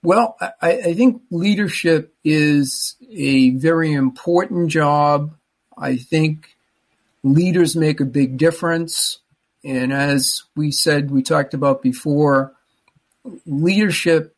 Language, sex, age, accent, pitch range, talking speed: English, male, 50-69, American, 135-160 Hz, 110 wpm